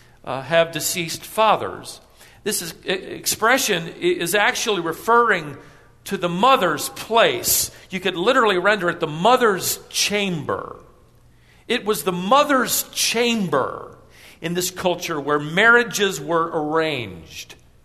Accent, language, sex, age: American, English, male, 50-69